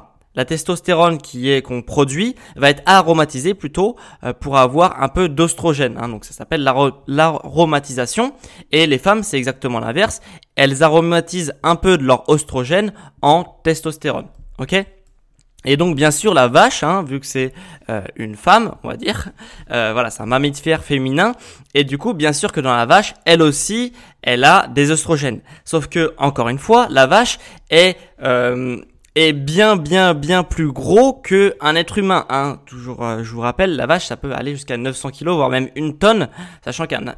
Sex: male